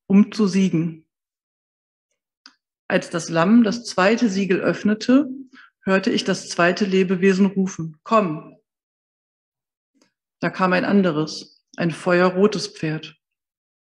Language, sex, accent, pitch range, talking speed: German, female, German, 165-205 Hz, 105 wpm